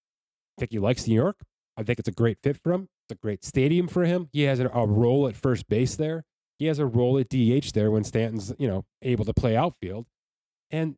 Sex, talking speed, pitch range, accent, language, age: male, 240 wpm, 105-145 Hz, American, English, 30-49